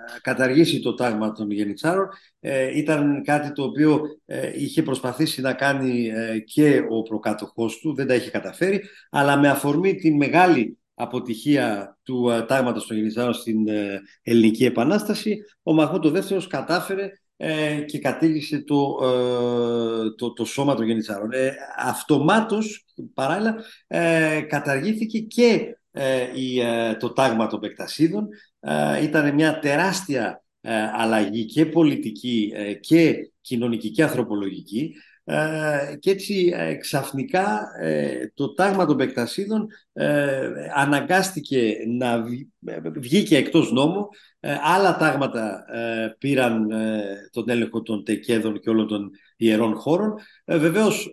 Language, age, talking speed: Greek, 50-69, 105 wpm